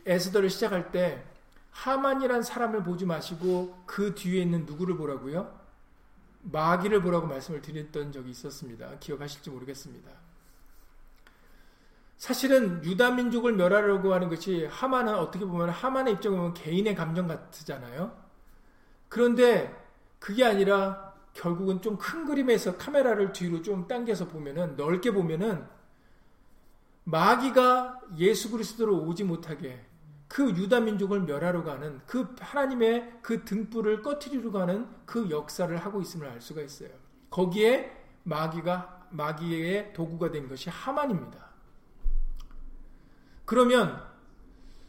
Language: Korean